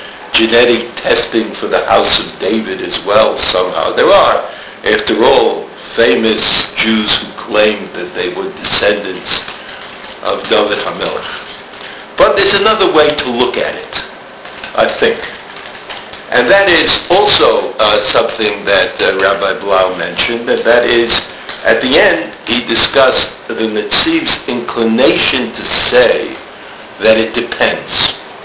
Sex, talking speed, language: male, 130 wpm, English